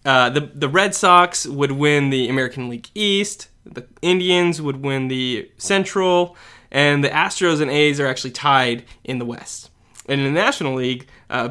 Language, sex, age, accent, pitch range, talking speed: English, male, 20-39, American, 125-155 Hz, 175 wpm